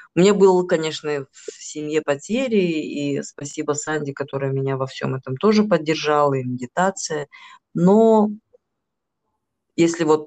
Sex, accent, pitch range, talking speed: female, native, 145-185 Hz, 130 wpm